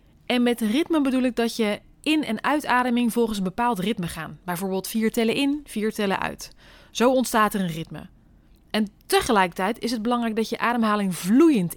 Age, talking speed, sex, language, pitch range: 20-39, 185 wpm, female, Dutch, 200-260 Hz